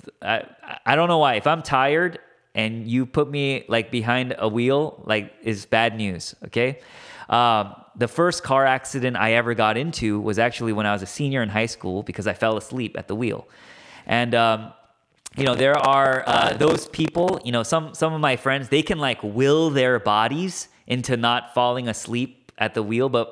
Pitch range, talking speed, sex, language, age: 115-150 Hz, 200 wpm, male, English, 20-39